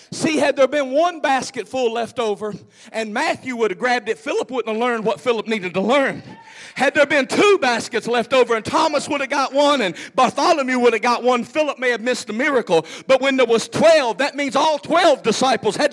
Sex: male